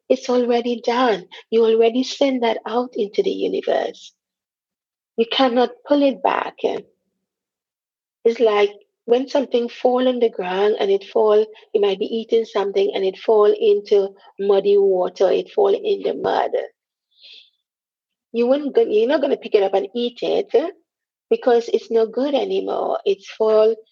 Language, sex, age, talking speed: English, female, 40-59, 165 wpm